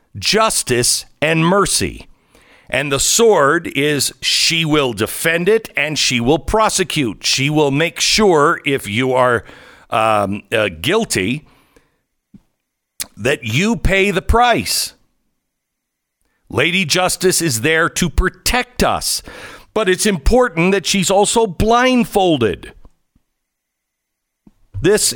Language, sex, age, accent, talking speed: English, male, 60-79, American, 105 wpm